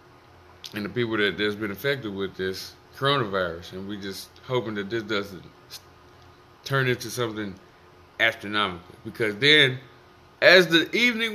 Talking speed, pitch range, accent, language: 135 wpm, 95-135 Hz, American, English